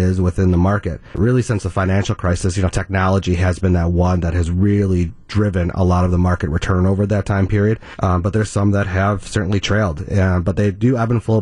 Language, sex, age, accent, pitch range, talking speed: English, male, 30-49, American, 95-110 Hz, 235 wpm